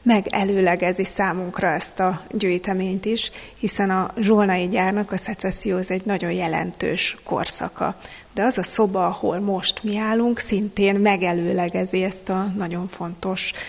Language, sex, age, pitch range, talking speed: Hungarian, female, 30-49, 185-215 Hz, 135 wpm